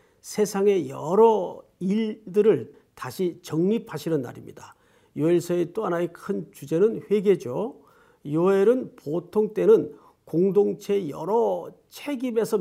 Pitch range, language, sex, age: 160-220 Hz, Korean, male, 50-69